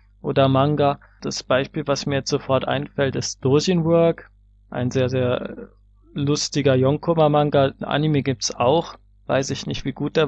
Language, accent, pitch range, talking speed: German, German, 120-140 Hz, 160 wpm